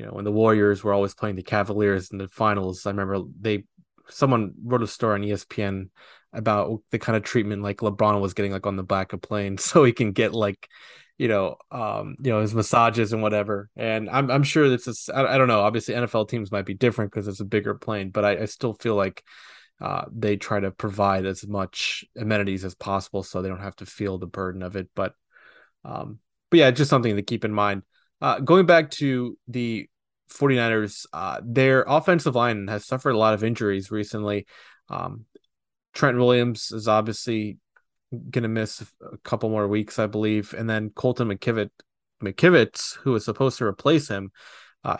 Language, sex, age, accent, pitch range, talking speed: English, male, 20-39, American, 100-120 Hz, 200 wpm